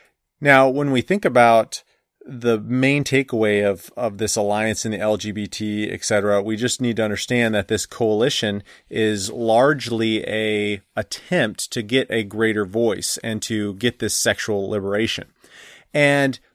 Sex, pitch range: male, 105-125 Hz